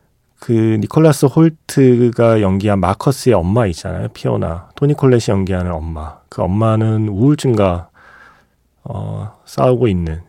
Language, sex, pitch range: Korean, male, 95-125 Hz